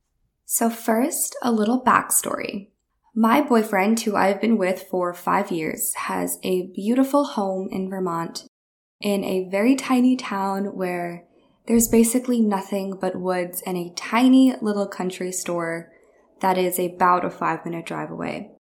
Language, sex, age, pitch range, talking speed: English, female, 10-29, 175-215 Hz, 145 wpm